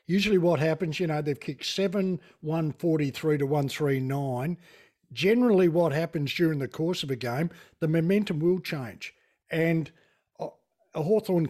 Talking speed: 140 wpm